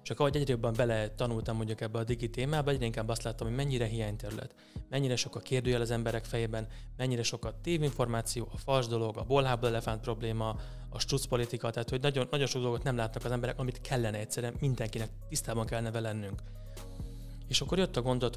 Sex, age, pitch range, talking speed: male, 30-49, 110-125 Hz, 185 wpm